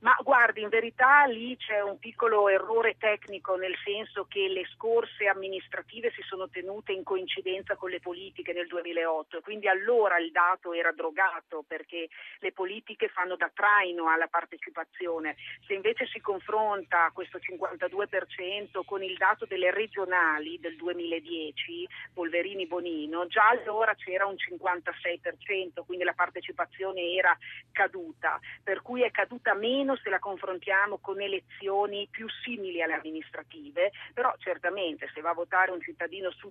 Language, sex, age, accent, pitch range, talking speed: Italian, female, 40-59, native, 170-210 Hz, 145 wpm